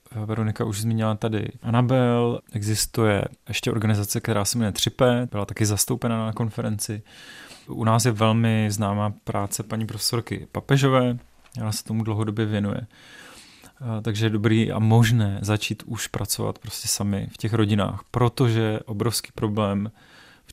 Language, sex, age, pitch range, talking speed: Czech, male, 30-49, 105-115 Hz, 140 wpm